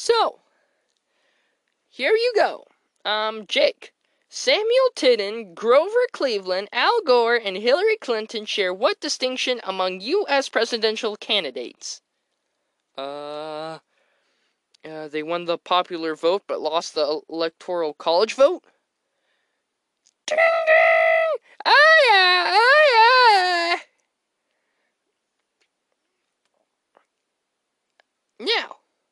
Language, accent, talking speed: English, American, 85 wpm